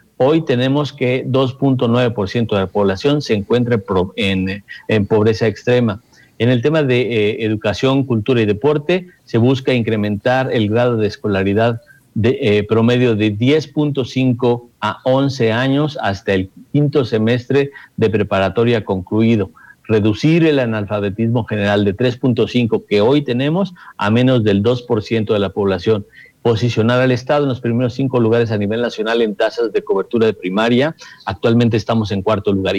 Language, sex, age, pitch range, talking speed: Spanish, male, 50-69, 110-135 Hz, 150 wpm